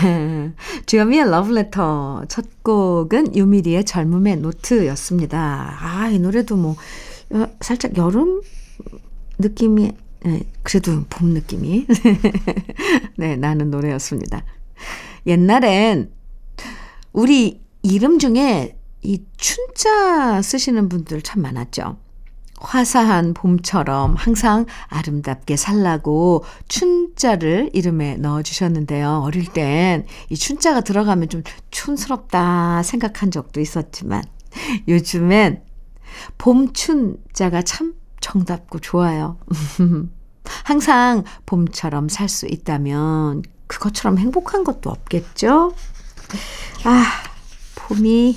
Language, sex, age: Korean, female, 50-69